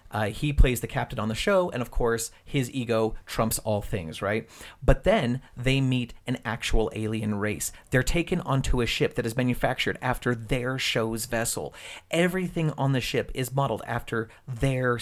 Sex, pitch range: male, 115-140 Hz